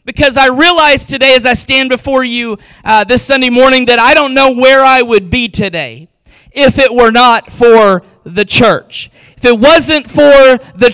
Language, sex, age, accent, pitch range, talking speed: English, male, 40-59, American, 235-275 Hz, 185 wpm